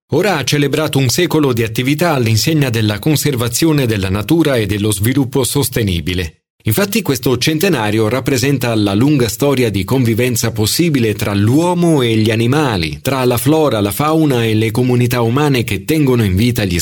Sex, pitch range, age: male, 110-145 Hz, 40-59